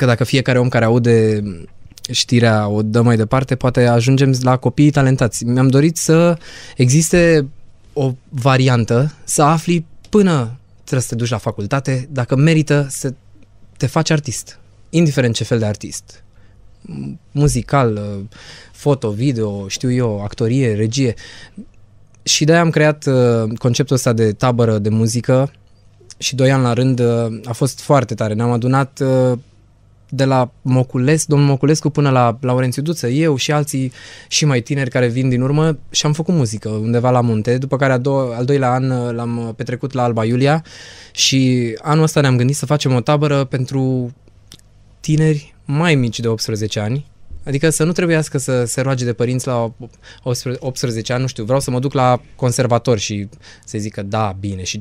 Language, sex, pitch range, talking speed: Romanian, male, 110-140 Hz, 165 wpm